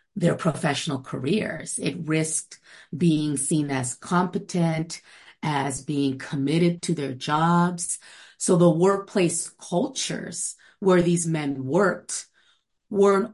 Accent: American